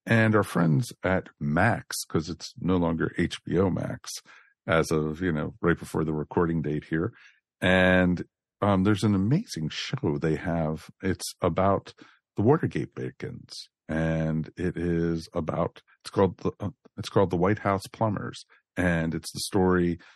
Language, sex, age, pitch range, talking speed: English, male, 50-69, 80-95 Hz, 160 wpm